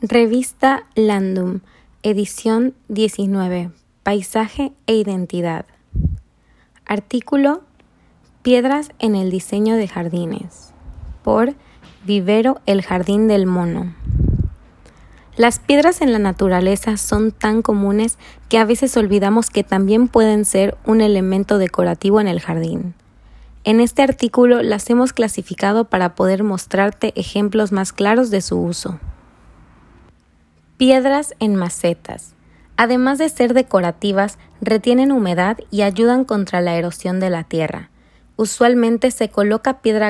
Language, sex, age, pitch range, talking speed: Spanish, female, 20-39, 185-230 Hz, 115 wpm